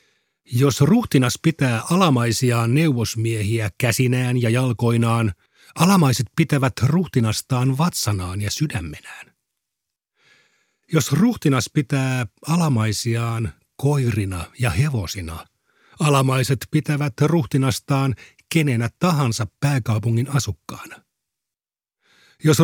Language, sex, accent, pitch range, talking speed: Finnish, male, native, 110-145 Hz, 75 wpm